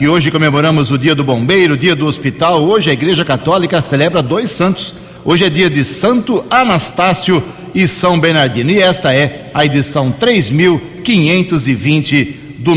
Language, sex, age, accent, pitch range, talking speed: Portuguese, male, 60-79, Brazilian, 140-175 Hz, 160 wpm